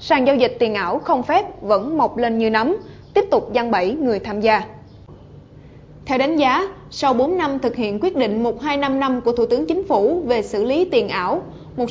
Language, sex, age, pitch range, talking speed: Vietnamese, female, 20-39, 230-320 Hz, 215 wpm